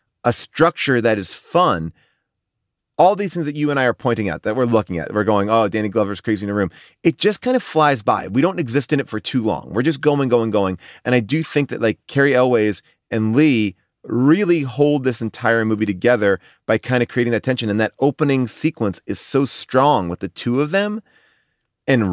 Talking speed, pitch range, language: 220 wpm, 110-145 Hz, English